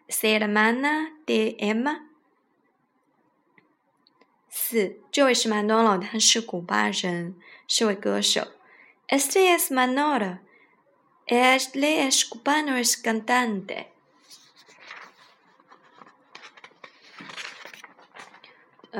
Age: 20-39